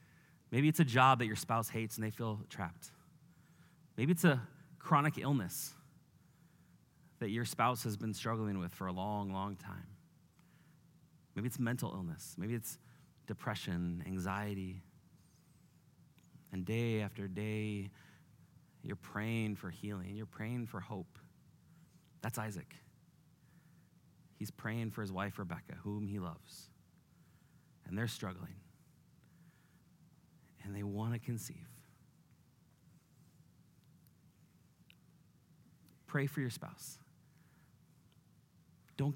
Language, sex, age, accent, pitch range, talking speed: English, male, 30-49, American, 105-150 Hz, 110 wpm